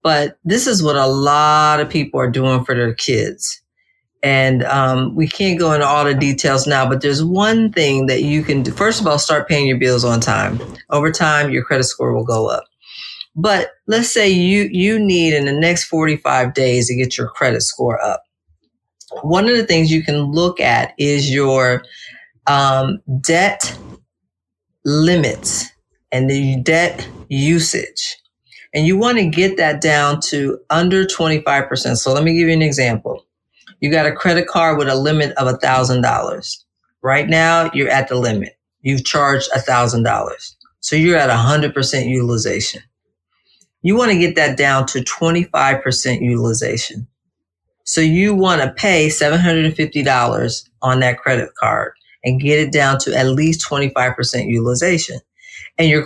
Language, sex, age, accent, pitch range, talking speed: English, female, 40-59, American, 130-165 Hz, 165 wpm